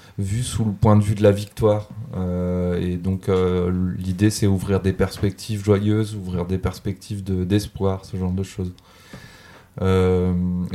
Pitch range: 95-110 Hz